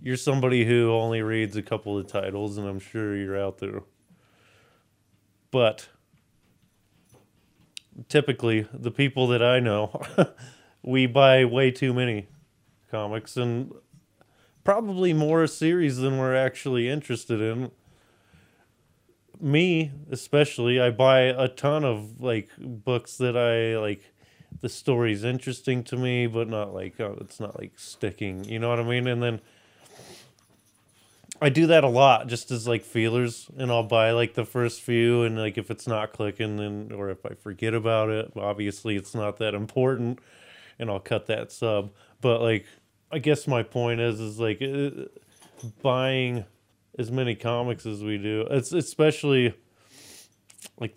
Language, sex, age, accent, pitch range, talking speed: English, male, 20-39, American, 110-130 Hz, 150 wpm